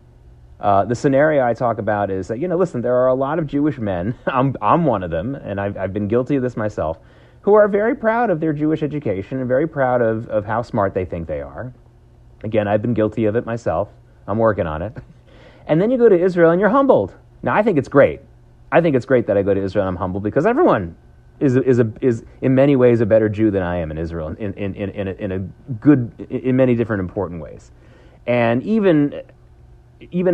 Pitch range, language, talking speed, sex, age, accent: 105-145 Hz, English, 235 wpm, male, 30-49, American